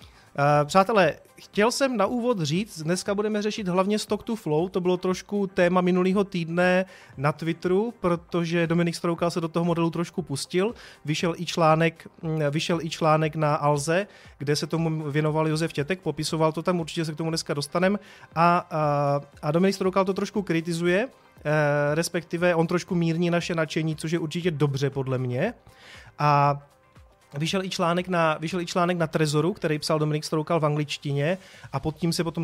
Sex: male